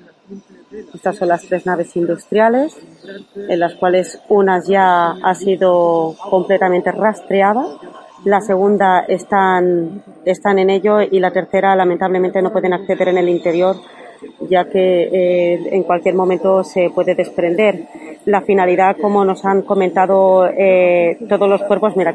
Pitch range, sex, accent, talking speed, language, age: 180-205 Hz, female, Spanish, 140 wpm, Spanish, 30-49